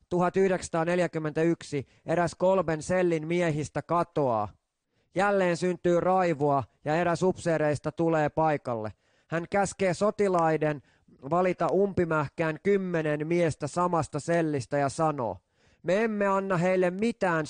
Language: Finnish